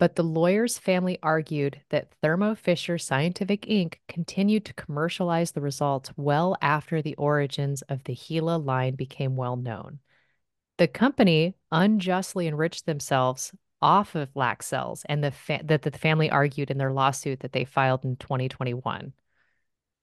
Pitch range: 135-170 Hz